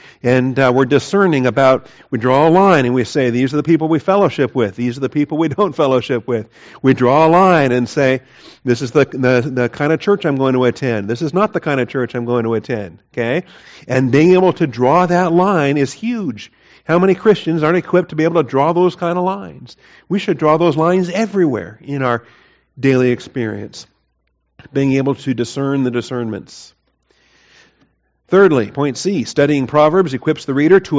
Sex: male